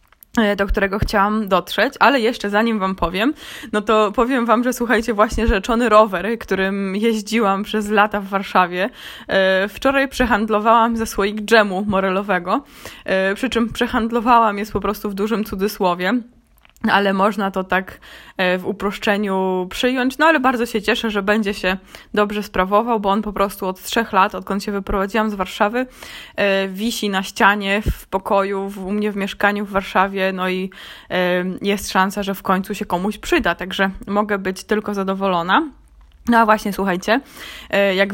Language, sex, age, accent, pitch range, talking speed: Polish, female, 20-39, native, 190-225 Hz, 155 wpm